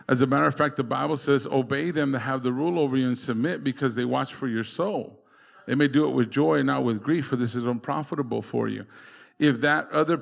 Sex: male